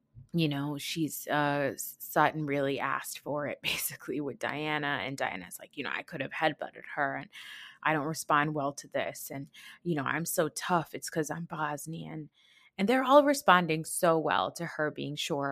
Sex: female